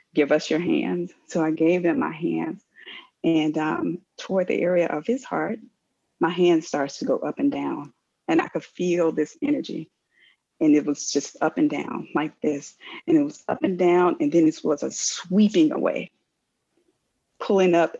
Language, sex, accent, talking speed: English, female, American, 185 wpm